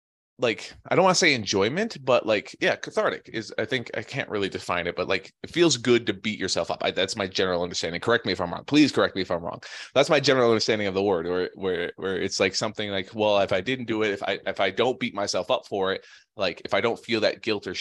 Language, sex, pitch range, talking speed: English, male, 100-120 Hz, 285 wpm